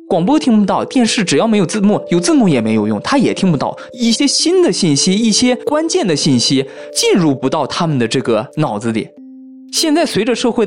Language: Chinese